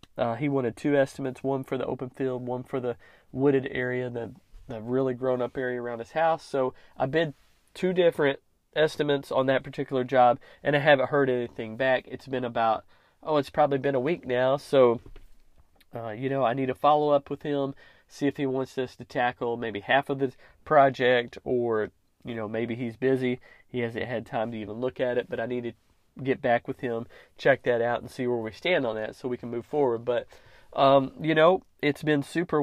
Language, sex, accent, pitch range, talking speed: English, male, American, 120-145 Hz, 215 wpm